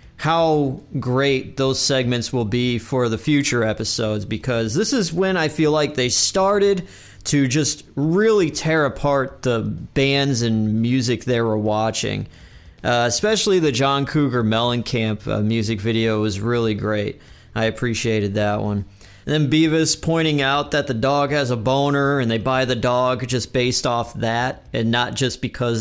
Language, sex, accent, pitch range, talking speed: English, male, American, 115-150 Hz, 165 wpm